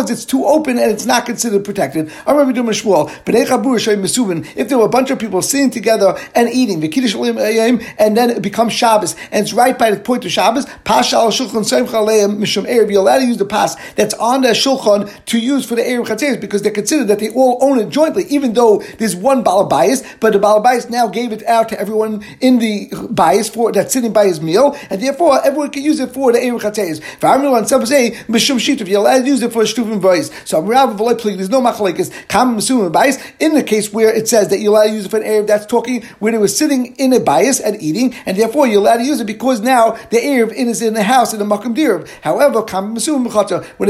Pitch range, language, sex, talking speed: 215-260 Hz, English, male, 200 wpm